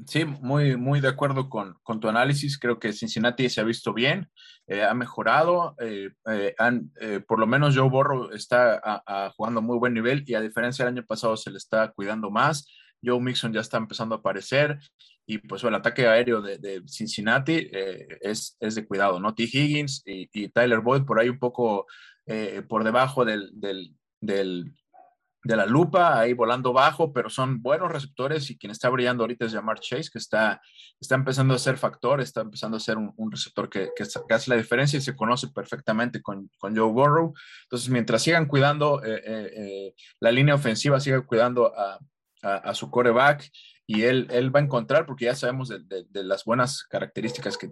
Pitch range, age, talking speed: 110-135 Hz, 20-39, 205 wpm